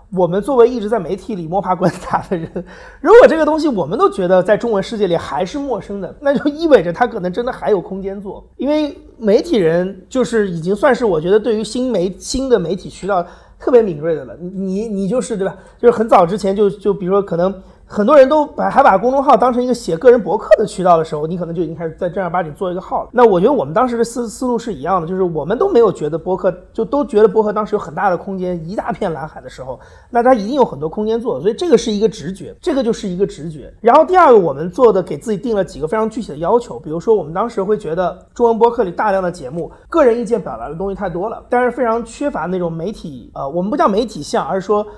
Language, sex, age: English, male, 30-49